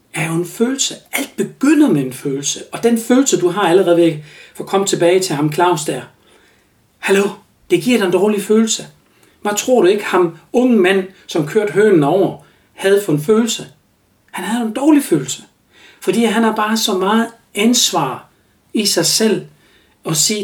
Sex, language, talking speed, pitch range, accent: male, Danish, 190 wpm, 165-230 Hz, native